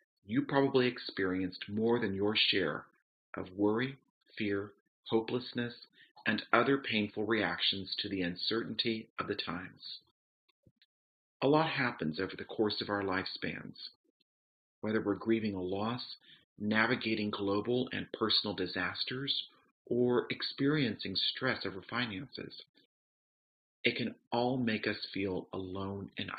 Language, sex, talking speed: English, male, 120 wpm